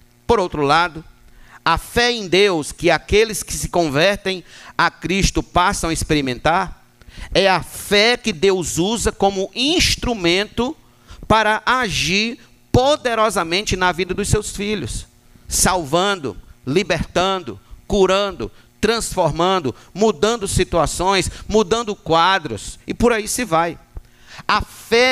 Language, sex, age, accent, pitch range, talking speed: Portuguese, male, 50-69, Brazilian, 135-205 Hz, 115 wpm